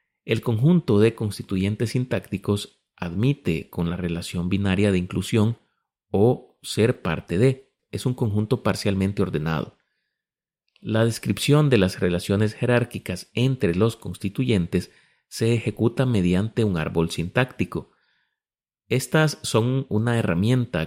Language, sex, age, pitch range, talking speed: Spanish, male, 30-49, 95-120 Hz, 115 wpm